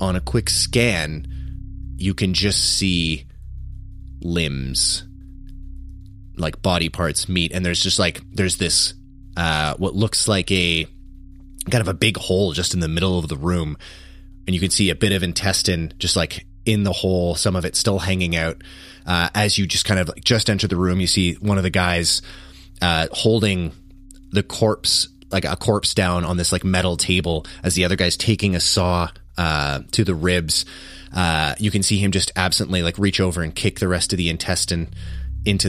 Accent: American